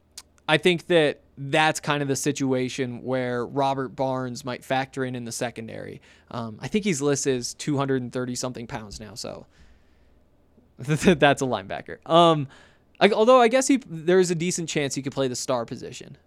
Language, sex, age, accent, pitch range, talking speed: English, male, 20-39, American, 120-155 Hz, 175 wpm